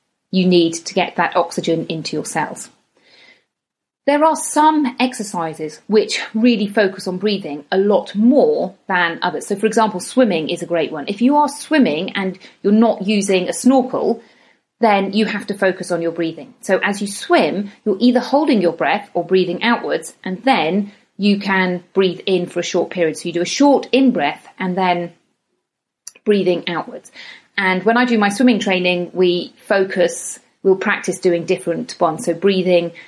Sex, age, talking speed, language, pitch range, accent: female, 40-59, 175 wpm, English, 180-230 Hz, British